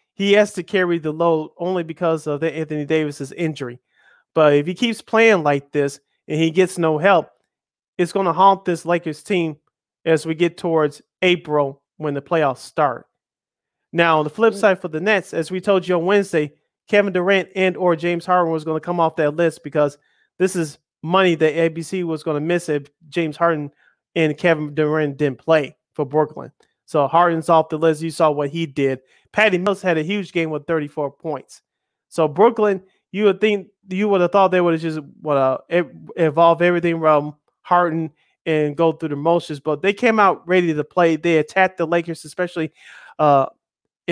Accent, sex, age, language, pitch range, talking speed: American, male, 30-49, English, 155-180 Hz, 195 wpm